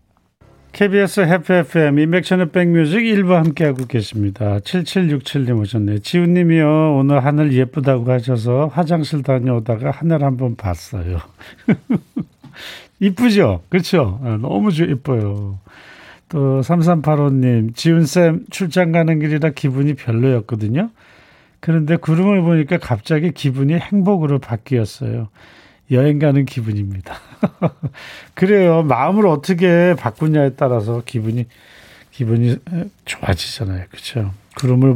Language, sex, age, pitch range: Korean, male, 40-59, 115-165 Hz